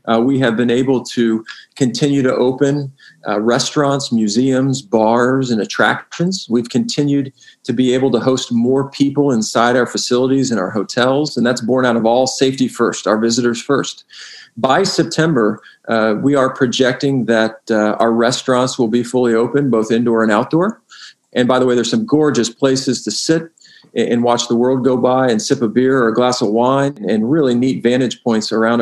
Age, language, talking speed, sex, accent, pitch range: 40-59, English, 185 wpm, male, American, 115-130 Hz